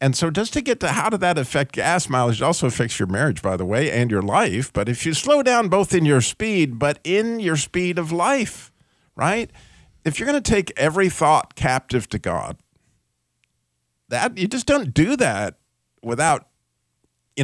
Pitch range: 125-165 Hz